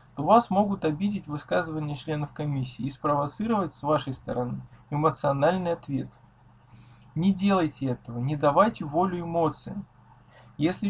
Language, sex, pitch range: Russian, male, 130-185 Hz